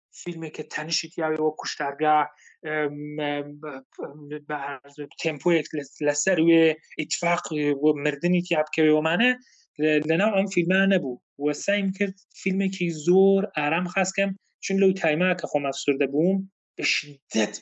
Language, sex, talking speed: English, male, 140 wpm